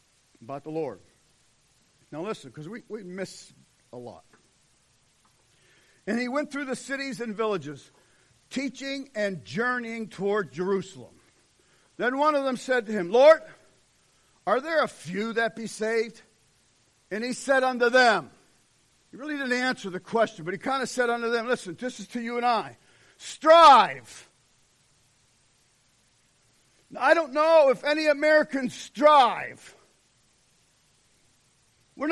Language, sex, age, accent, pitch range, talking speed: English, male, 50-69, American, 185-290 Hz, 135 wpm